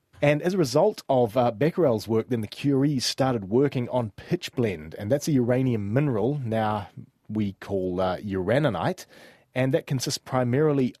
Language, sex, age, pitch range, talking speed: English, male, 30-49, 100-130 Hz, 165 wpm